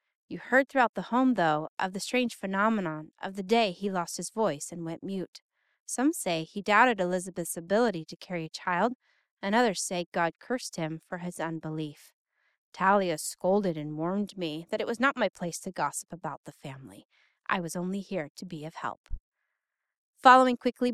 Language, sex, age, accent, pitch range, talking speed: English, female, 30-49, American, 170-220 Hz, 185 wpm